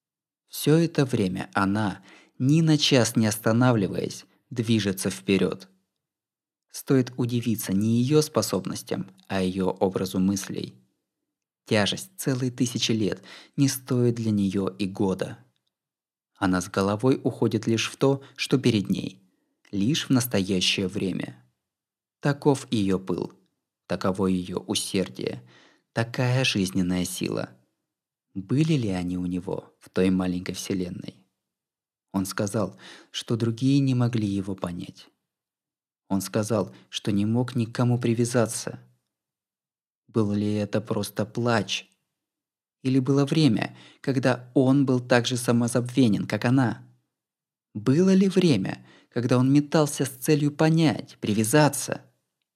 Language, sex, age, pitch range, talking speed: Russian, male, 20-39, 95-130 Hz, 120 wpm